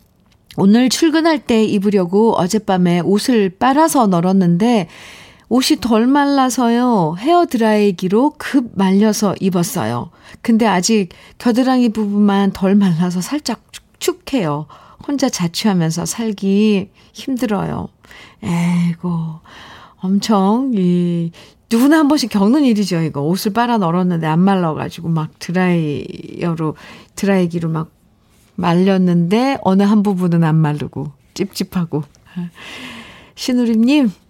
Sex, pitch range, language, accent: female, 170-230 Hz, Korean, native